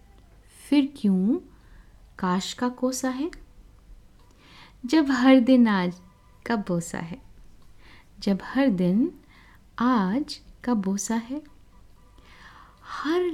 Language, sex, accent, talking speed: Hindi, female, native, 95 wpm